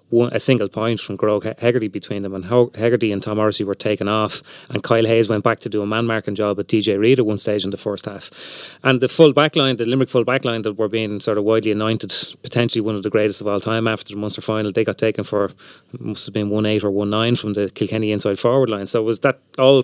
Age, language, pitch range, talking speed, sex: 30-49, English, 105-120 Hz, 270 wpm, male